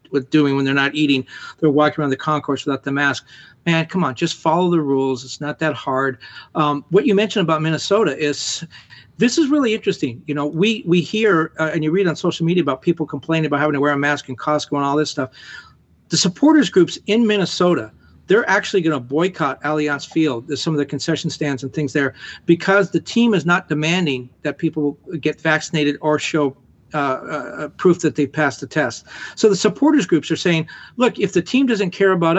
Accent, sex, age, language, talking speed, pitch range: American, male, 40-59, English, 215 wpm, 145-175 Hz